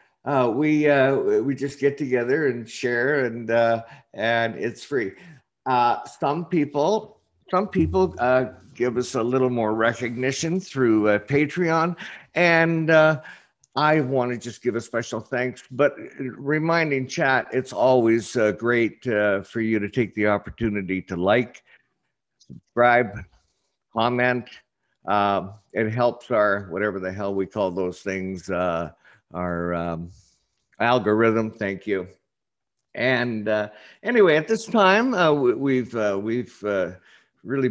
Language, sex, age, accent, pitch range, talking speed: English, male, 50-69, American, 105-140 Hz, 135 wpm